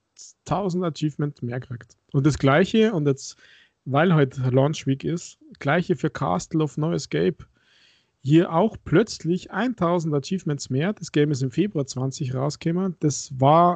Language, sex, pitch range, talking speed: German, male, 135-160 Hz, 155 wpm